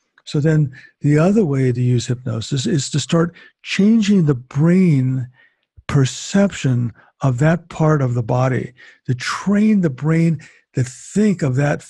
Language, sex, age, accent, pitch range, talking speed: English, male, 50-69, American, 130-170 Hz, 145 wpm